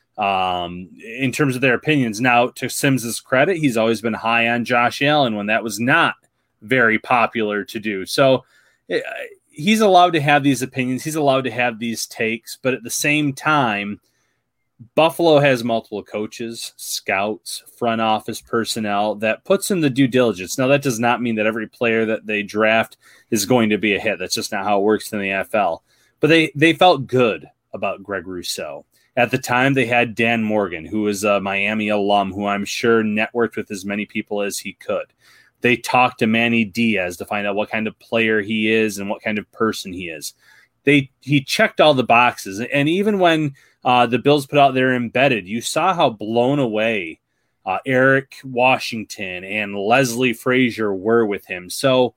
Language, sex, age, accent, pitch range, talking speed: English, male, 30-49, American, 110-135 Hz, 190 wpm